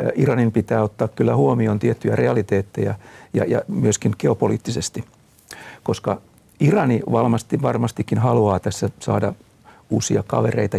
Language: Finnish